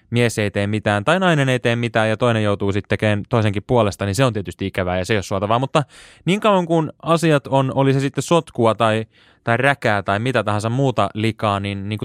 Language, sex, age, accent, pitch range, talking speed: Finnish, male, 20-39, native, 100-145 Hz, 230 wpm